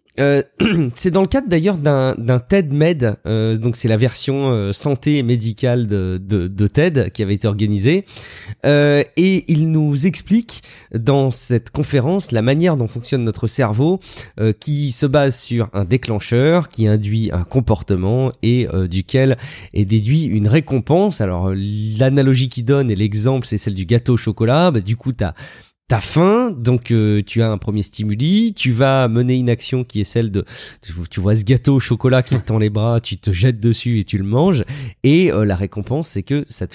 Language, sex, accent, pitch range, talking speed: French, male, French, 105-140 Hz, 190 wpm